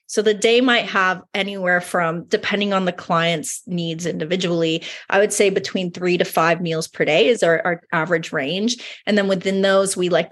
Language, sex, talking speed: English, female, 200 wpm